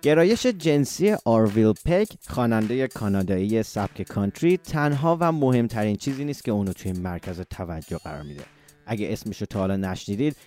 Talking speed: 150 wpm